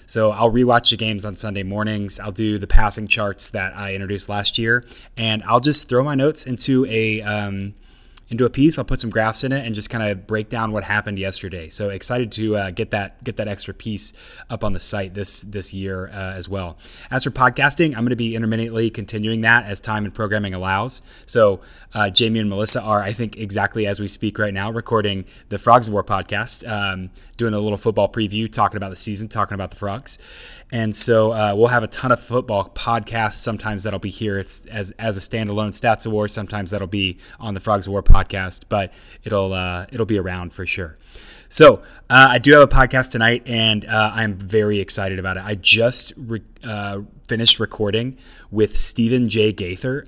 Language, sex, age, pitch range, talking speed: English, male, 30-49, 100-115 Hz, 210 wpm